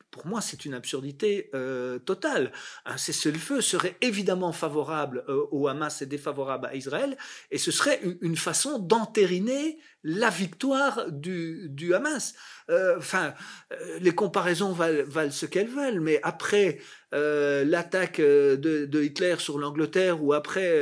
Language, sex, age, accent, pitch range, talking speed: French, male, 40-59, French, 155-225 Hz, 145 wpm